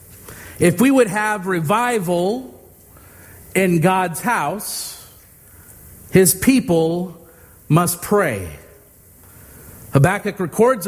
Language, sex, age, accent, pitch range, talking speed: English, male, 40-59, American, 135-205 Hz, 75 wpm